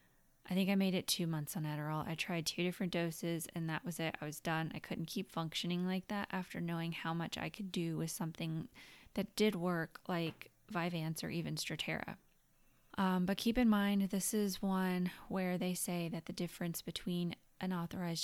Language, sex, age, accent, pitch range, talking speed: English, female, 20-39, American, 165-195 Hz, 200 wpm